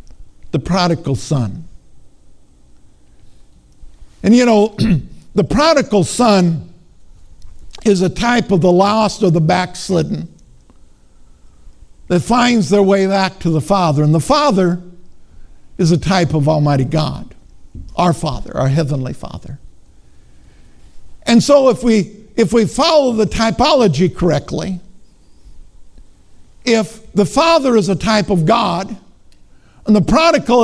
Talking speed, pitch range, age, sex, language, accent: 120 wpm, 145-235 Hz, 60-79, male, English, American